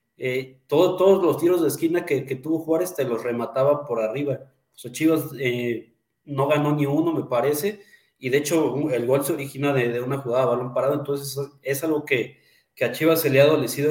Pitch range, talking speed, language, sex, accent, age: 125-145 Hz, 225 wpm, Spanish, male, Mexican, 30-49